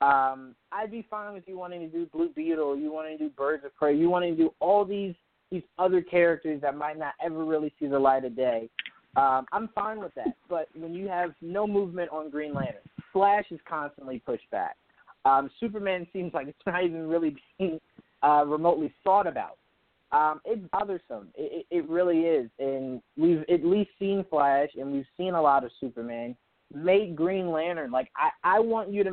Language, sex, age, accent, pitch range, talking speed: English, male, 20-39, American, 145-185 Hz, 205 wpm